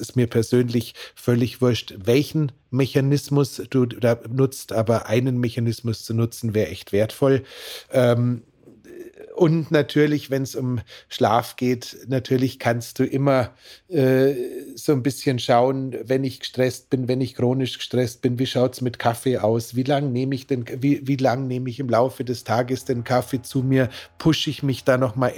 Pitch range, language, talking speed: 120-130 Hz, German, 175 wpm